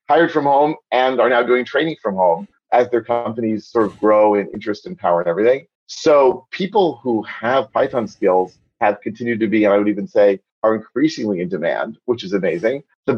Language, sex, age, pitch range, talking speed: English, male, 30-49, 105-130 Hz, 205 wpm